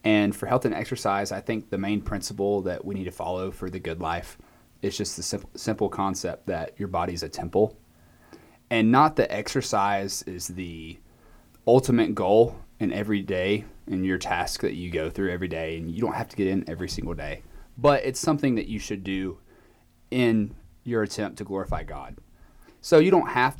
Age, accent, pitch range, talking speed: 30-49, American, 90-110 Hz, 200 wpm